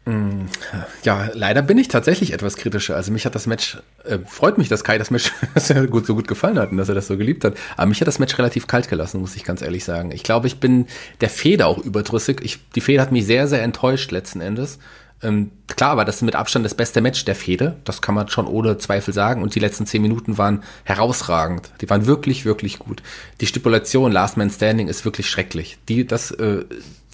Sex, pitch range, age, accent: male, 100-125 Hz, 30-49, German